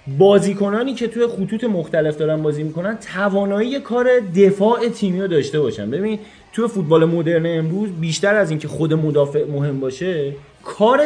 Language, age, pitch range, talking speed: Persian, 30-49, 150-215 Hz, 150 wpm